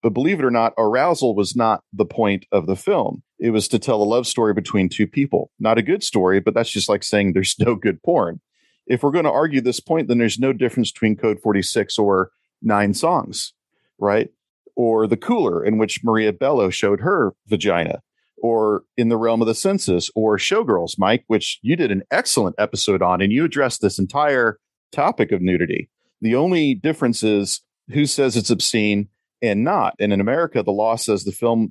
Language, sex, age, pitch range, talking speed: English, male, 40-59, 100-120 Hz, 205 wpm